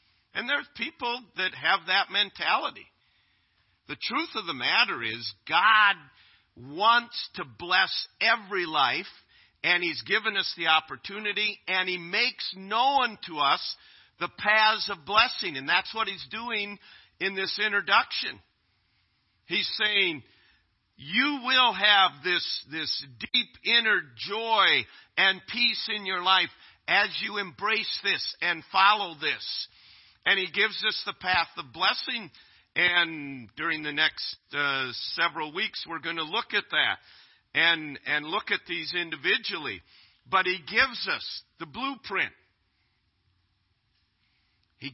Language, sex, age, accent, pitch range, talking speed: English, male, 50-69, American, 130-210 Hz, 130 wpm